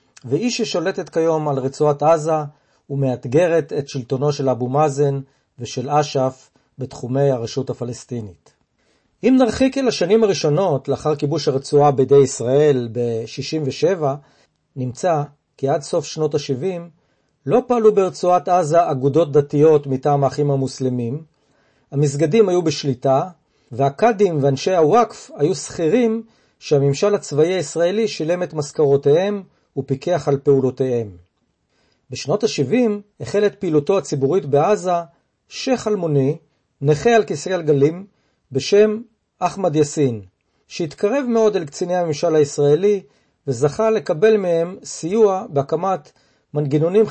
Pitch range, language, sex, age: 135-185 Hz, Hebrew, male, 40-59